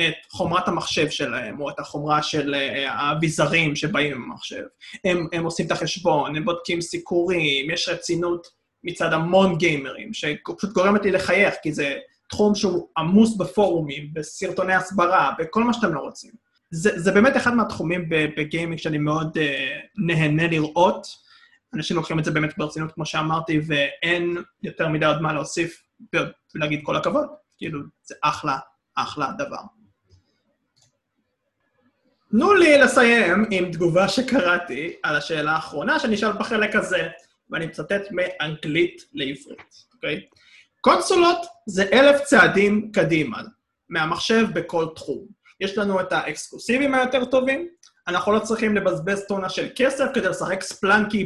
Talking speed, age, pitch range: 140 wpm, 20-39, 160-220 Hz